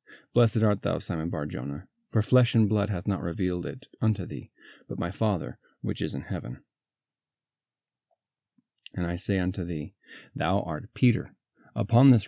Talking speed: 155 wpm